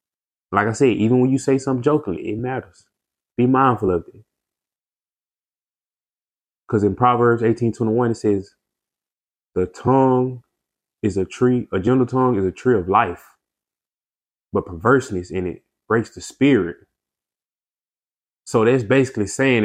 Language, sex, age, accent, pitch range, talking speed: English, male, 20-39, American, 100-130 Hz, 140 wpm